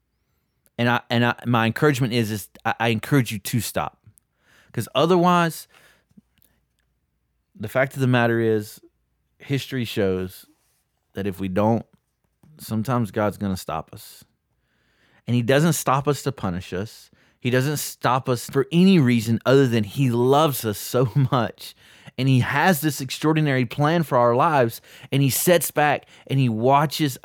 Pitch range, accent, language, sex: 110-135 Hz, American, English, male